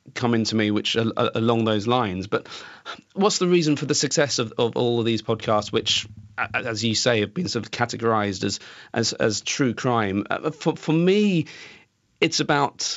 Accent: British